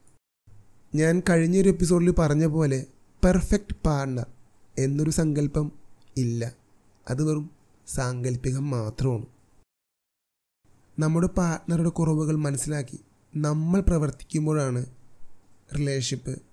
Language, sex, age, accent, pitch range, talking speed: Malayalam, male, 30-49, native, 105-155 Hz, 75 wpm